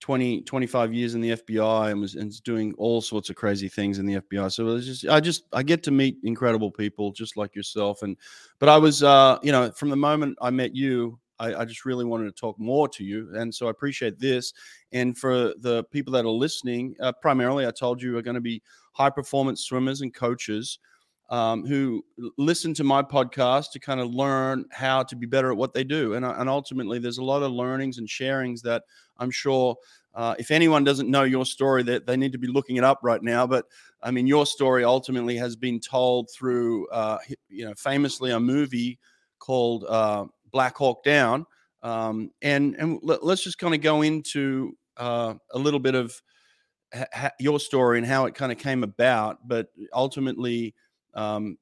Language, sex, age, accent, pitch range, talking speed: English, male, 30-49, Australian, 115-135 Hz, 210 wpm